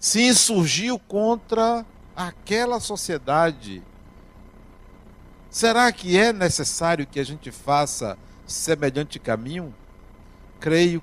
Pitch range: 125-170 Hz